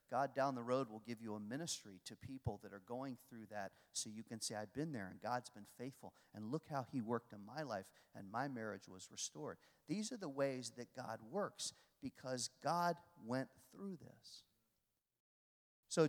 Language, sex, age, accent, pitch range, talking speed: English, male, 40-59, American, 115-180 Hz, 200 wpm